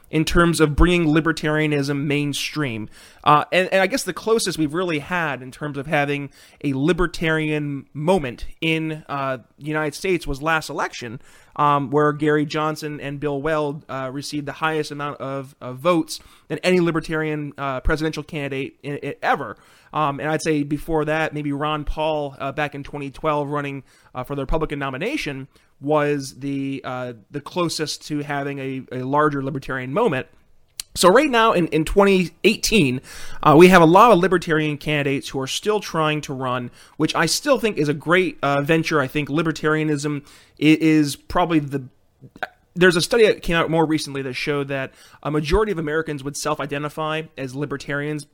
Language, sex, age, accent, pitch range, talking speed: English, male, 30-49, American, 140-160 Hz, 170 wpm